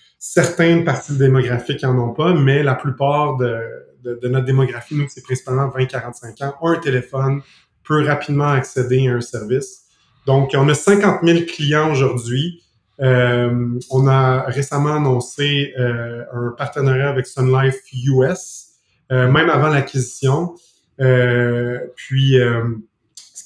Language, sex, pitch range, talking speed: French, male, 125-145 Hz, 140 wpm